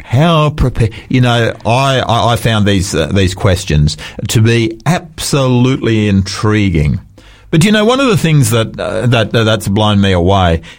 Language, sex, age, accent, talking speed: English, male, 50-69, Australian, 165 wpm